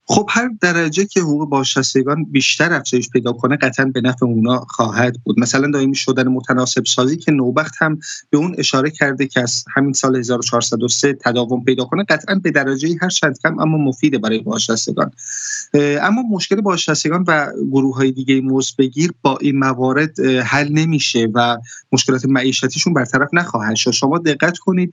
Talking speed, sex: 165 wpm, male